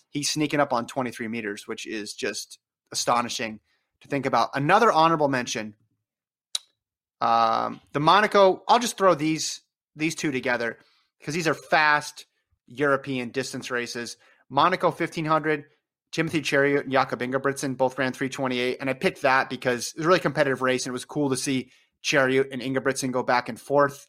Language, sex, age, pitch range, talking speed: English, male, 30-49, 130-155 Hz, 165 wpm